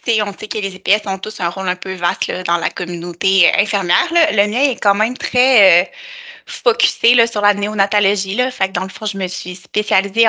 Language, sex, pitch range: French, female, 180-215 Hz